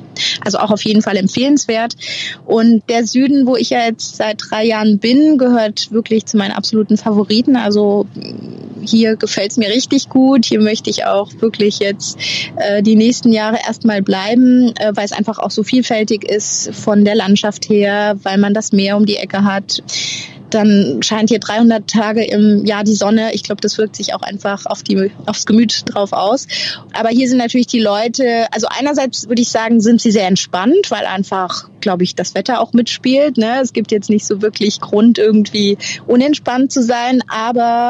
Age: 20-39